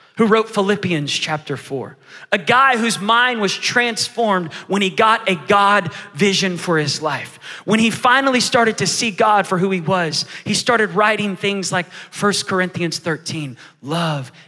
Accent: American